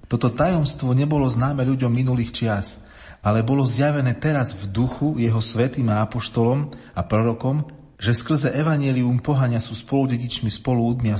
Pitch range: 95-125 Hz